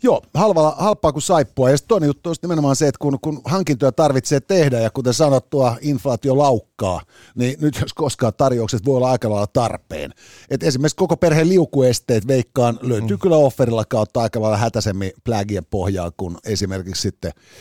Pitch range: 120-170 Hz